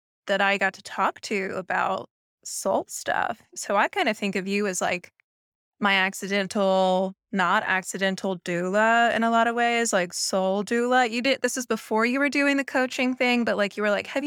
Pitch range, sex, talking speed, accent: 190-235 Hz, female, 200 wpm, American